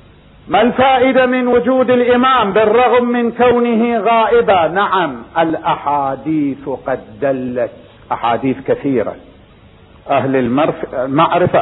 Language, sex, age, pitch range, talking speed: Arabic, male, 50-69, 140-230 Hz, 90 wpm